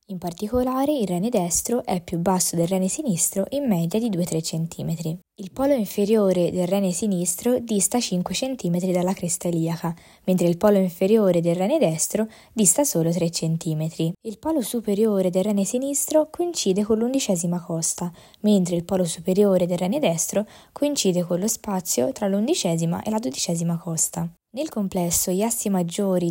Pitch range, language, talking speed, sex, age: 175-220 Hz, Italian, 160 wpm, female, 20-39